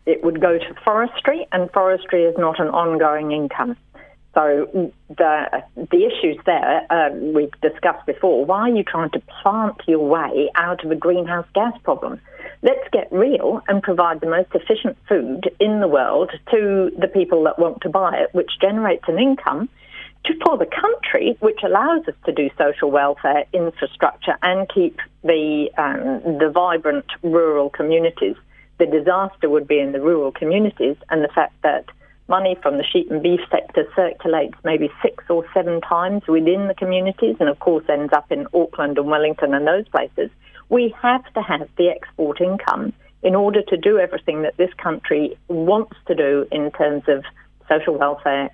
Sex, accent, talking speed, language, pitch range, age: female, British, 175 wpm, English, 150-195 Hz, 50-69